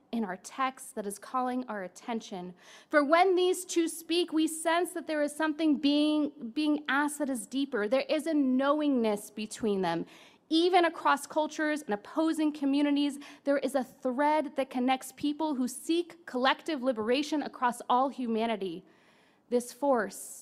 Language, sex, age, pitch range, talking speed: English, female, 30-49, 240-300 Hz, 155 wpm